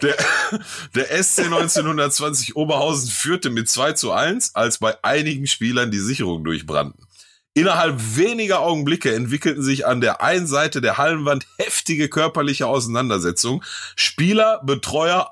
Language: German